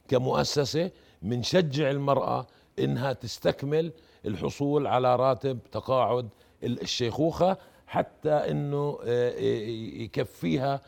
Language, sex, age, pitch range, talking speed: Arabic, male, 50-69, 115-135 Hz, 70 wpm